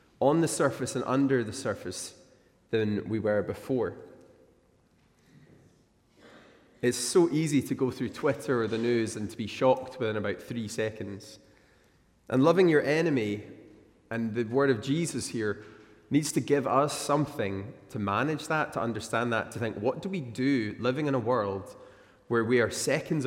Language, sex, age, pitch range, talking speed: English, male, 20-39, 110-145 Hz, 165 wpm